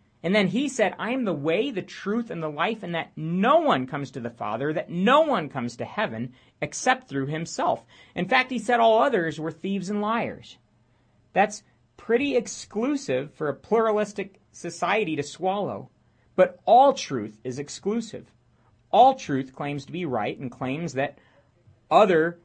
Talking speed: 170 wpm